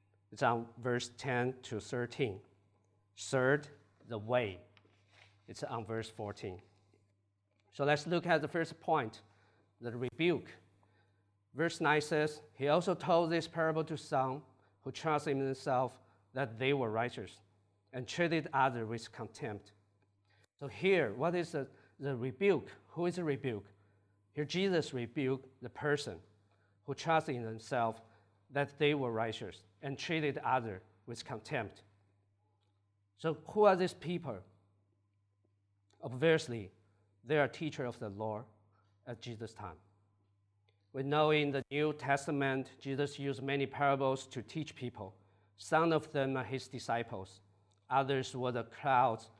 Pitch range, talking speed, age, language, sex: 100-140 Hz, 135 wpm, 50-69, English, male